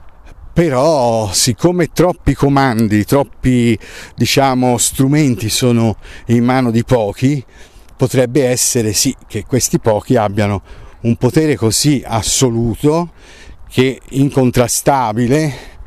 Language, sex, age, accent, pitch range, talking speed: Italian, male, 50-69, native, 100-125 Hz, 95 wpm